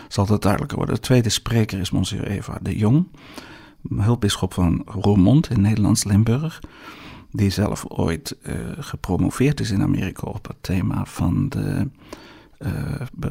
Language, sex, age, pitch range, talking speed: Dutch, male, 50-69, 100-140 Hz, 145 wpm